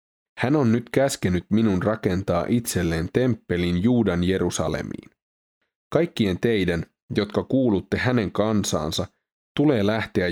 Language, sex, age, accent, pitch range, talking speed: Finnish, male, 30-49, native, 90-110 Hz, 105 wpm